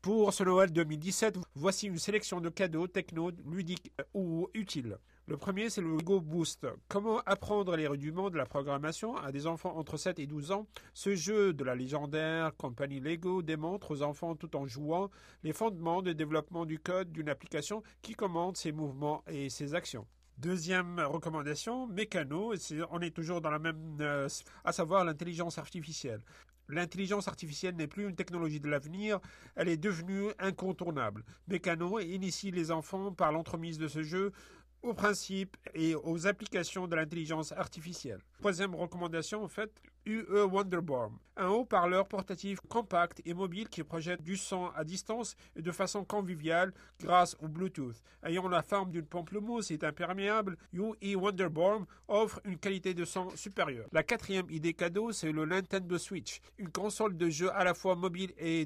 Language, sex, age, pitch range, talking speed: French, male, 50-69, 160-195 Hz, 165 wpm